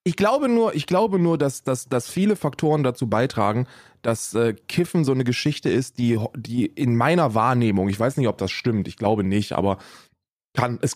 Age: 20-39